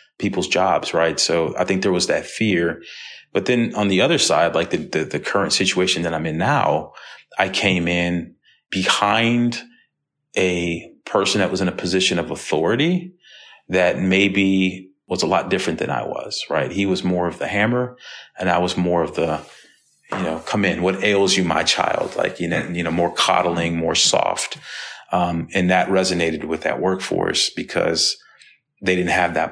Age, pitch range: 30-49, 85-100 Hz